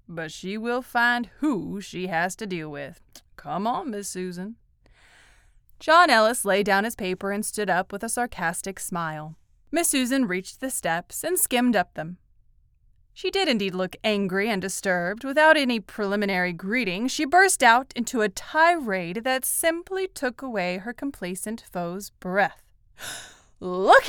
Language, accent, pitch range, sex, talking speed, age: English, American, 200-275 Hz, female, 155 wpm, 20-39